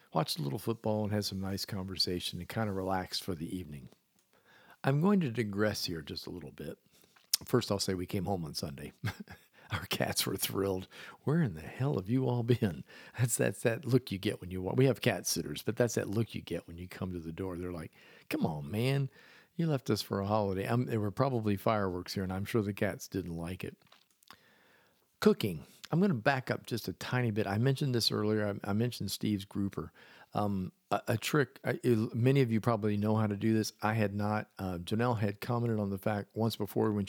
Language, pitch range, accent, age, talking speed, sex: English, 95-115 Hz, American, 50-69, 225 wpm, male